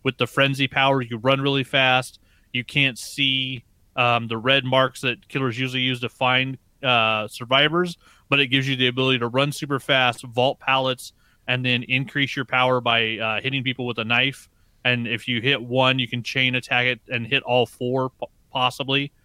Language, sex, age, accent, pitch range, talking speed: English, male, 30-49, American, 125-145 Hz, 195 wpm